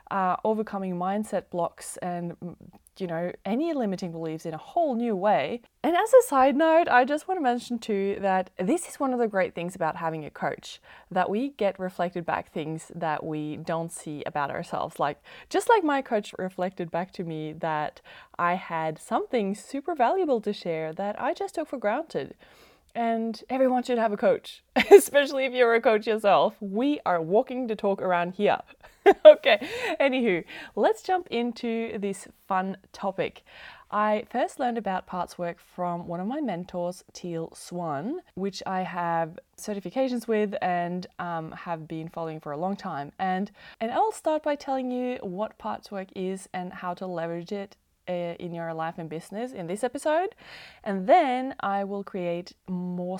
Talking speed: 175 wpm